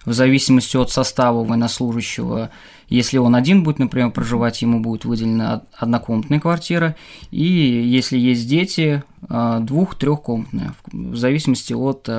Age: 20-39